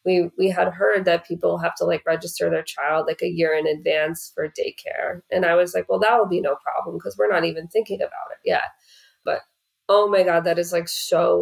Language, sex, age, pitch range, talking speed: English, female, 20-39, 165-250 Hz, 235 wpm